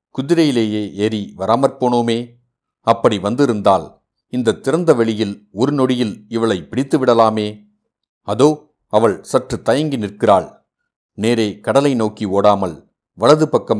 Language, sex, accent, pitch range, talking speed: Tamil, male, native, 100-125 Hz, 95 wpm